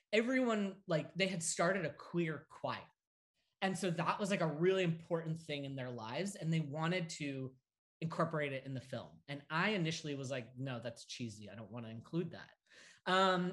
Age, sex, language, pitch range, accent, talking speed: 20-39, male, English, 140-185 Hz, American, 195 wpm